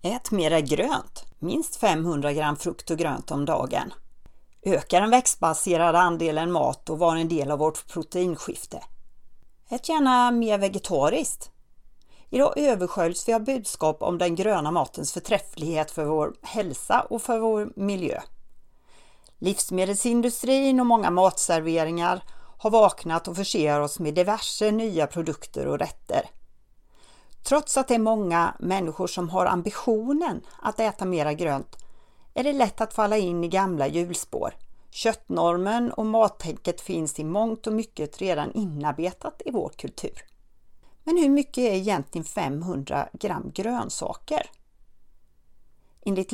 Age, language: 40-59, Swedish